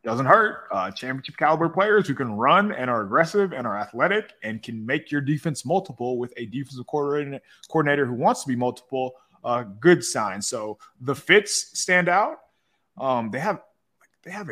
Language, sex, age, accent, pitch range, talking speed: English, male, 20-39, American, 105-150 Hz, 180 wpm